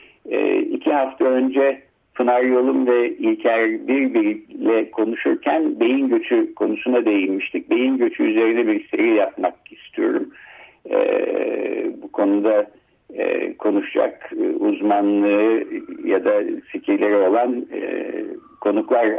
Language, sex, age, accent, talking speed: Turkish, male, 60-79, native, 105 wpm